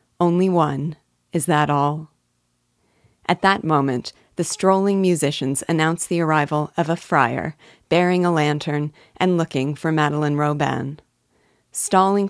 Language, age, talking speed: English, 40-59, 125 wpm